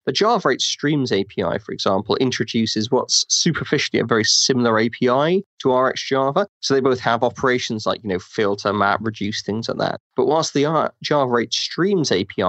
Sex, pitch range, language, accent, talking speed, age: male, 115-135 Hz, English, British, 185 wpm, 20-39